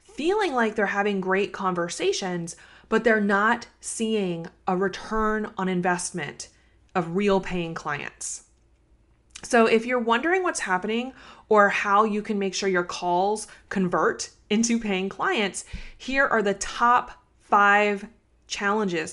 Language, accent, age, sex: English, American, 20-39, female